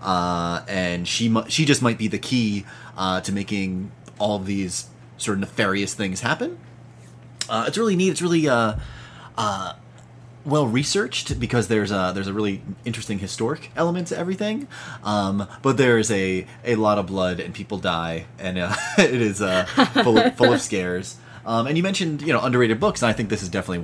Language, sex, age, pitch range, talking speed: English, male, 30-49, 95-120 Hz, 195 wpm